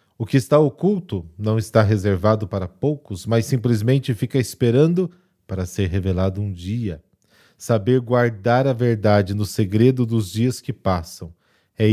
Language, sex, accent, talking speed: Portuguese, male, Brazilian, 145 wpm